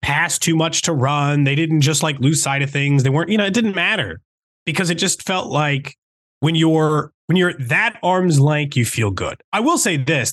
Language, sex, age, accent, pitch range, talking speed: English, male, 30-49, American, 145-225 Hz, 225 wpm